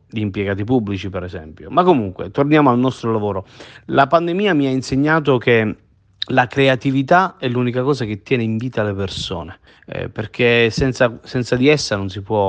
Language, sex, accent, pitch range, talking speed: Italian, male, native, 105-130 Hz, 165 wpm